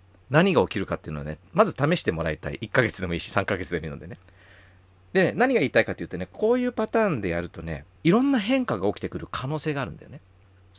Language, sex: Japanese, male